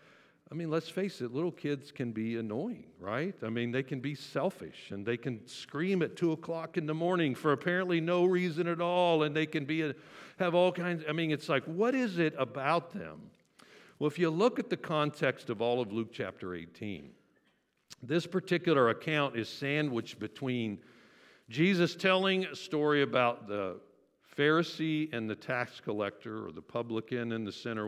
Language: English